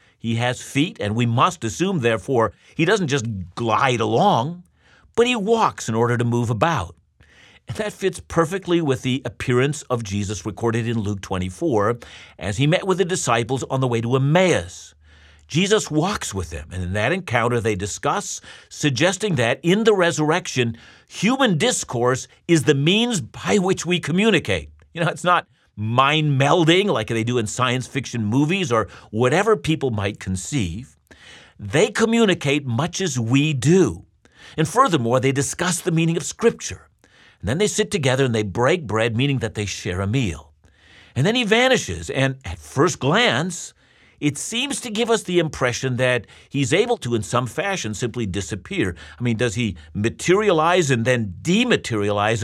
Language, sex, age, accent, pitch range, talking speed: English, male, 50-69, American, 110-170 Hz, 170 wpm